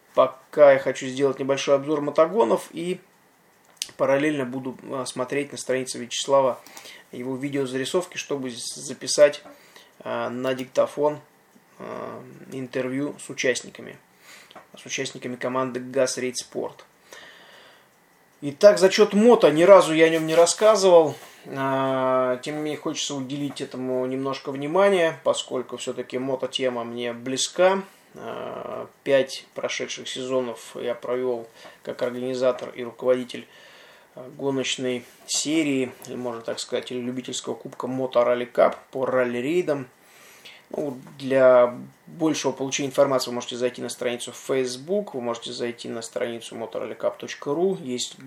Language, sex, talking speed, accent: Russian, male, 115 wpm, native